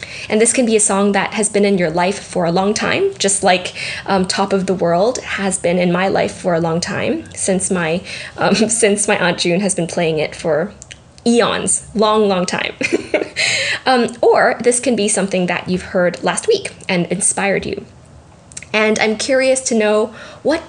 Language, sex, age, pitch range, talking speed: English, female, 10-29, 185-235 Hz, 195 wpm